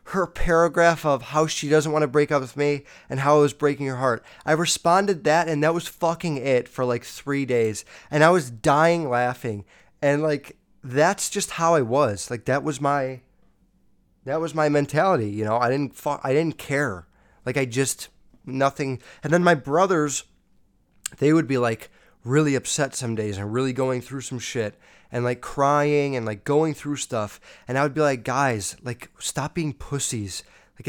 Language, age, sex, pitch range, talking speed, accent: English, 20-39, male, 125-155 Hz, 195 wpm, American